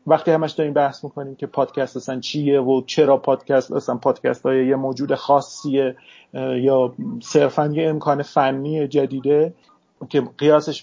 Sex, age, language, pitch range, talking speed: male, 40-59, Persian, 135-165 Hz, 145 wpm